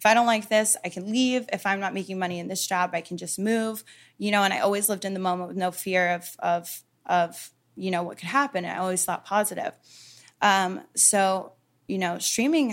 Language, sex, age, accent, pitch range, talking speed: English, female, 20-39, American, 180-200 Hz, 235 wpm